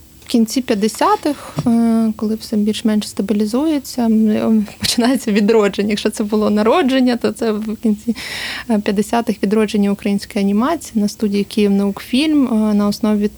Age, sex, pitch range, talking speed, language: 20-39, female, 210-235 Hz, 120 wpm, Ukrainian